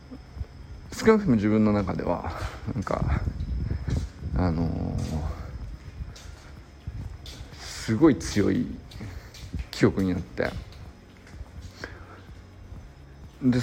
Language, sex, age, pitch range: Japanese, male, 50-69, 90-120 Hz